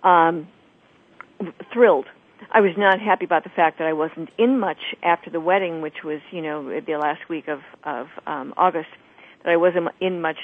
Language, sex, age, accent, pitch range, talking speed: English, female, 50-69, American, 170-220 Hz, 190 wpm